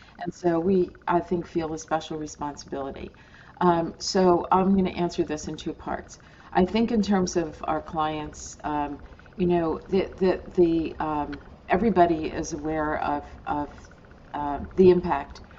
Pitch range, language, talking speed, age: 150-175 Hz, English, 160 wpm, 50-69